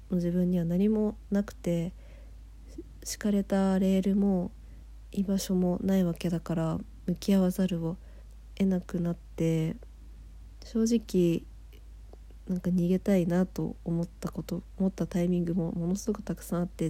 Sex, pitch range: female, 170-195 Hz